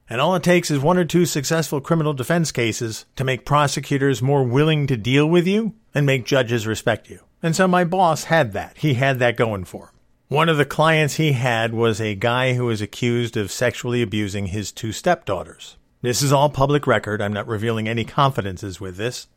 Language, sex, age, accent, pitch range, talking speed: English, male, 50-69, American, 110-145 Hz, 210 wpm